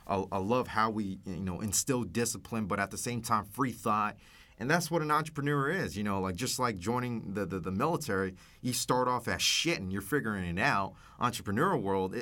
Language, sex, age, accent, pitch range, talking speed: English, male, 30-49, American, 95-130 Hz, 210 wpm